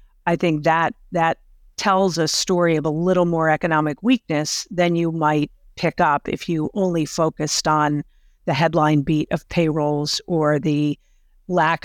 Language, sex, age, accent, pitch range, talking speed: English, female, 50-69, American, 150-180 Hz, 155 wpm